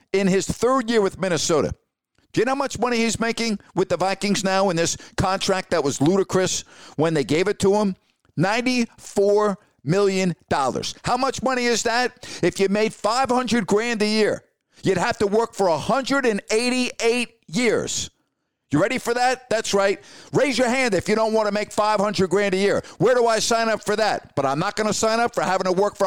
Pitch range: 170-220 Hz